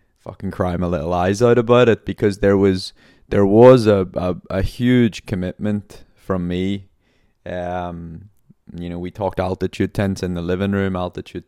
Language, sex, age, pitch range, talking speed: English, male, 20-39, 95-105 Hz, 165 wpm